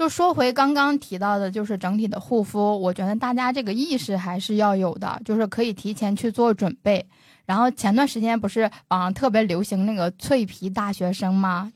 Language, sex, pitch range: Chinese, female, 190-240 Hz